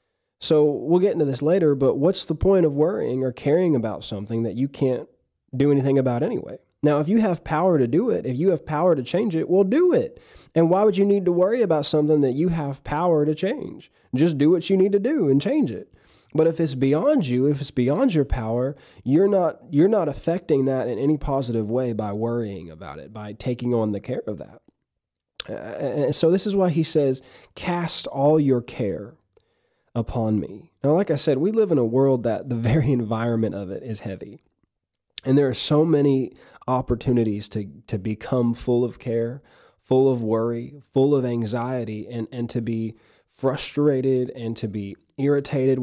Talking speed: 205 wpm